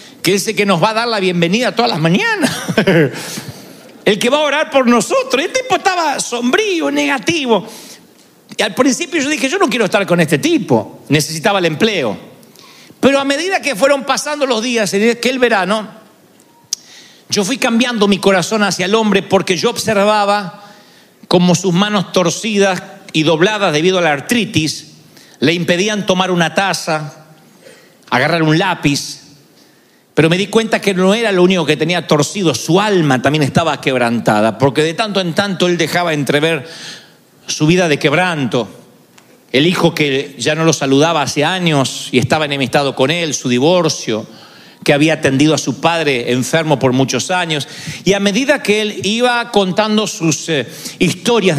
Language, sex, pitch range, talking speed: Spanish, male, 155-215 Hz, 165 wpm